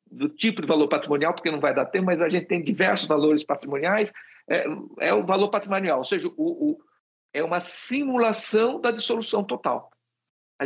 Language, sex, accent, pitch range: Portuguese, male, Brazilian, 160-250 Hz